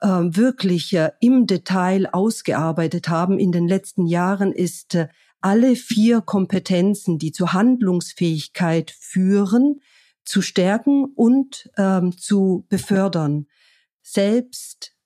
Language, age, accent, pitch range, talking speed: German, 50-69, German, 175-220 Hz, 95 wpm